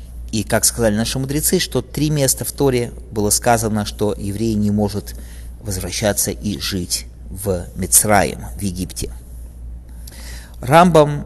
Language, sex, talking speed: English, male, 130 wpm